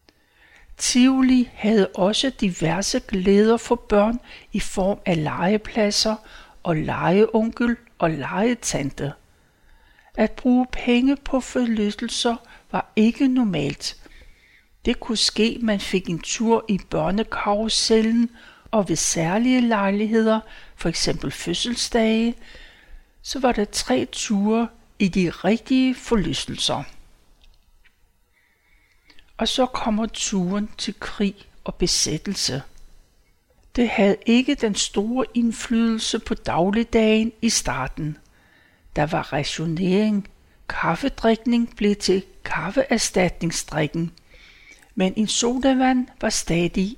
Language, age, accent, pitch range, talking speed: Danish, 60-79, native, 185-235 Hz, 100 wpm